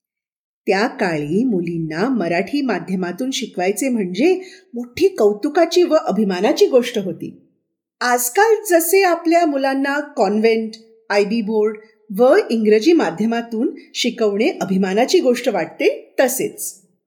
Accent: native